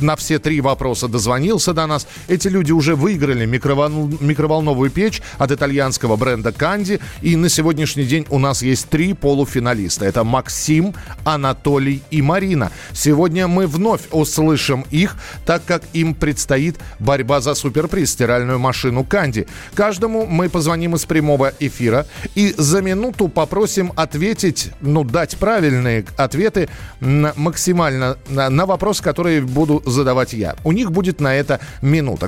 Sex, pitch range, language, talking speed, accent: male, 130-165 Hz, Russian, 145 wpm, native